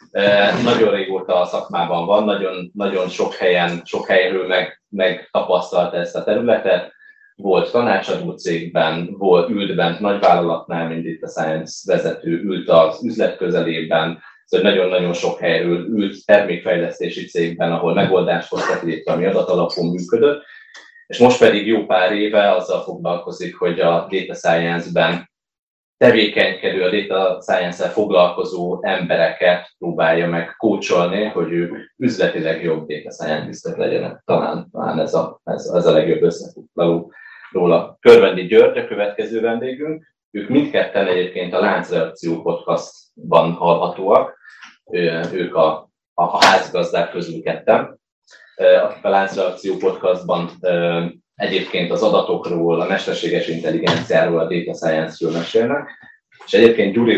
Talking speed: 120 wpm